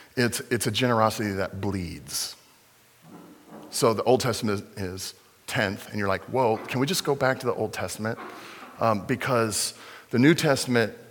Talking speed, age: 160 wpm, 40-59